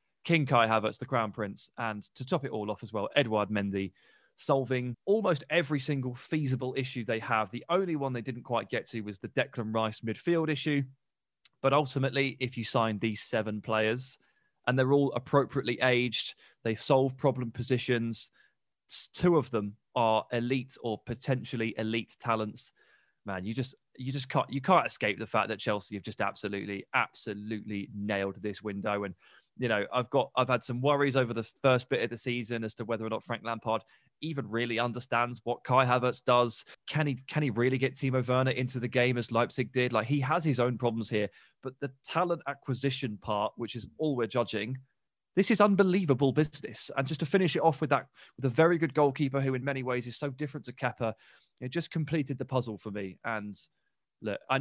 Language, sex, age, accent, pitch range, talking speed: English, male, 20-39, British, 115-140 Hz, 200 wpm